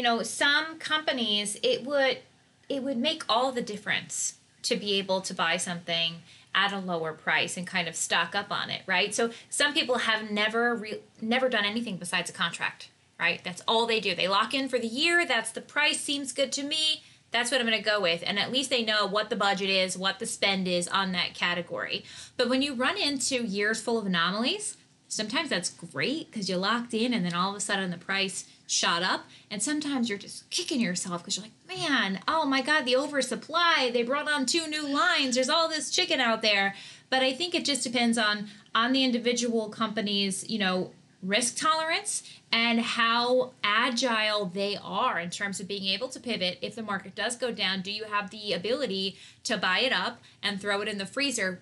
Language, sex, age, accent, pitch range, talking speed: English, female, 20-39, American, 195-265 Hz, 215 wpm